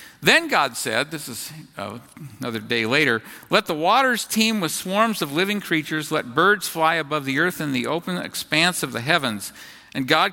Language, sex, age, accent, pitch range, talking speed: English, male, 50-69, American, 135-195 Hz, 190 wpm